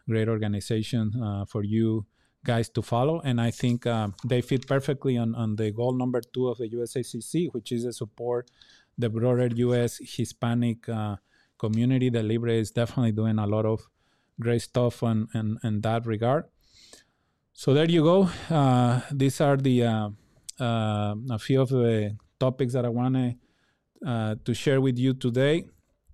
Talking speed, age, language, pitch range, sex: 170 wpm, 20-39, English, 110-125 Hz, male